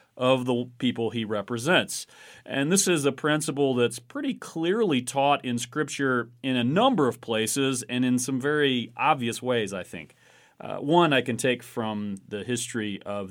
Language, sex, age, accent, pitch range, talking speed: English, male, 40-59, American, 115-140 Hz, 170 wpm